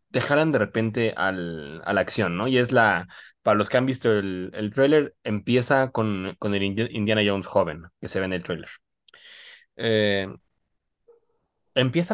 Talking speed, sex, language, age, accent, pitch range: 170 wpm, male, Spanish, 20-39, Mexican, 105-140 Hz